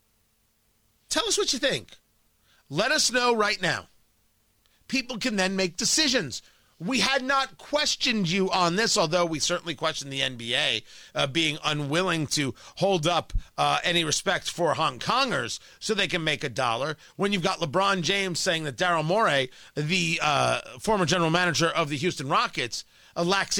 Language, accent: English, American